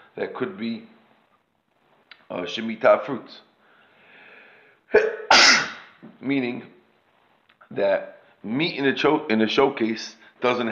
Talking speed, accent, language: 80 wpm, American, English